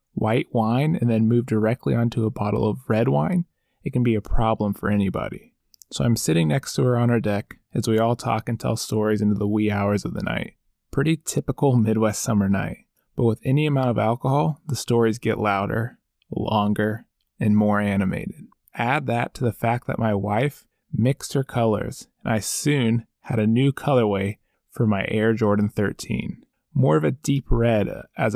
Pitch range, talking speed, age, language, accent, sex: 105-125 Hz, 190 wpm, 20-39, English, American, male